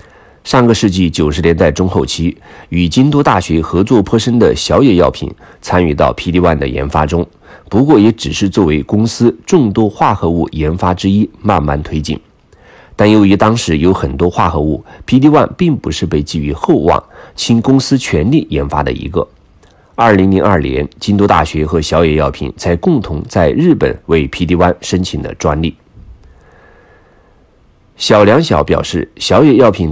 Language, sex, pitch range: Chinese, male, 75-105 Hz